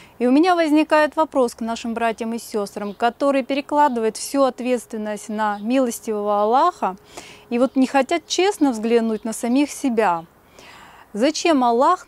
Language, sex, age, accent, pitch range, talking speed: Russian, female, 20-39, native, 220-285 Hz, 140 wpm